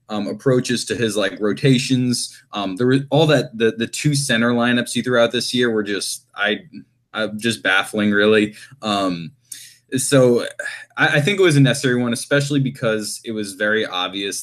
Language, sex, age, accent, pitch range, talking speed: English, male, 20-39, American, 100-120 Hz, 185 wpm